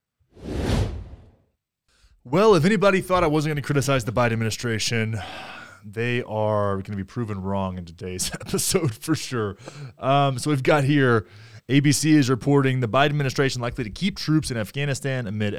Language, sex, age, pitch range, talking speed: English, male, 20-39, 105-145 Hz, 160 wpm